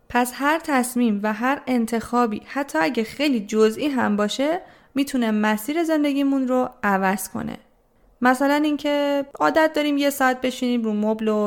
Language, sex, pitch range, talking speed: Persian, female, 210-275 Hz, 145 wpm